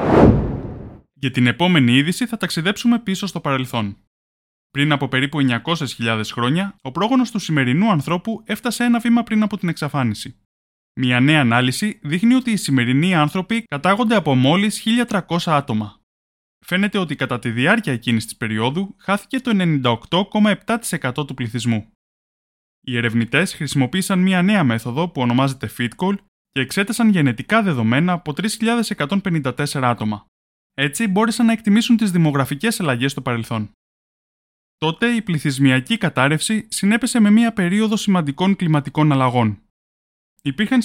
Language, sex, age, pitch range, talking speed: Greek, male, 20-39, 125-200 Hz, 130 wpm